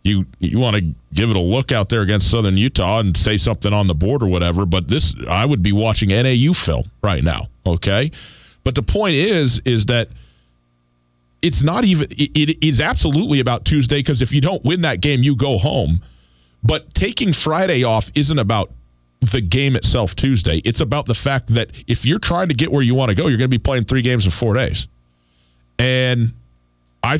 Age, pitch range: 40-59, 95-135 Hz